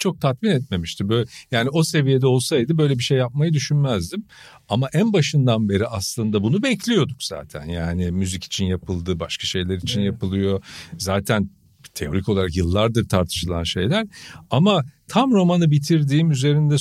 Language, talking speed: Turkish, 145 wpm